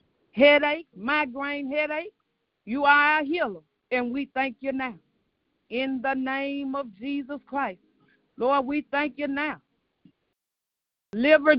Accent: American